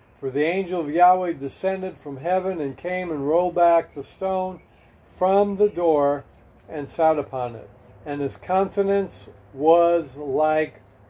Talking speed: 145 wpm